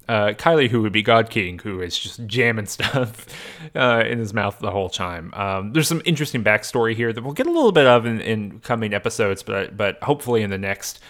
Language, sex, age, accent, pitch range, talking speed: English, male, 20-39, American, 105-130 Hz, 220 wpm